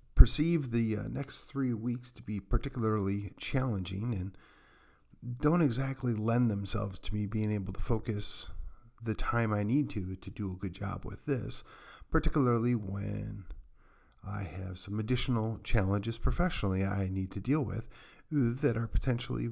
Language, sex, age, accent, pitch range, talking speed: English, male, 40-59, American, 100-125 Hz, 150 wpm